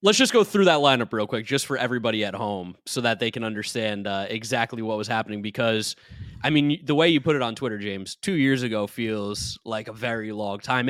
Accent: American